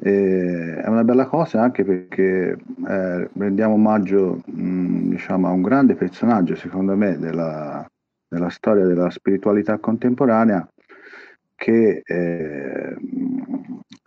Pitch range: 90-120 Hz